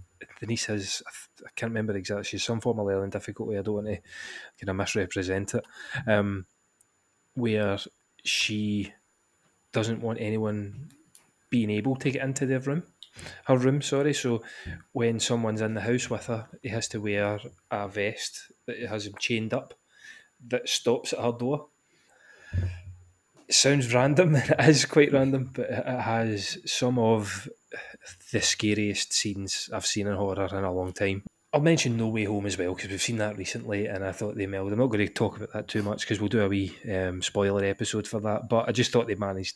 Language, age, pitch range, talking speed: English, 20-39, 100-120 Hz, 190 wpm